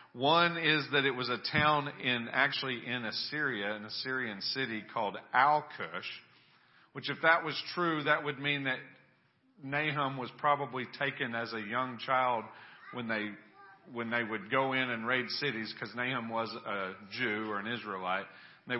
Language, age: English, 40-59